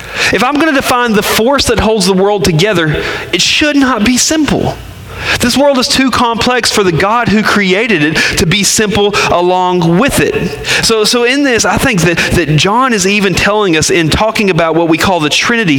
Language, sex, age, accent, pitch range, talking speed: English, male, 30-49, American, 155-225 Hz, 210 wpm